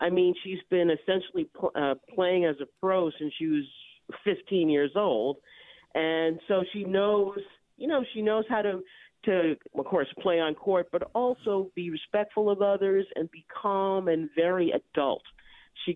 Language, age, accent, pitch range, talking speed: English, 50-69, American, 165-210 Hz, 170 wpm